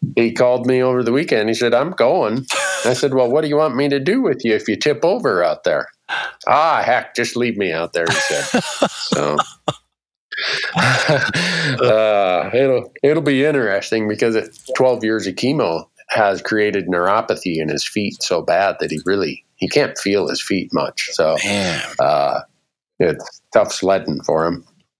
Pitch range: 105-140 Hz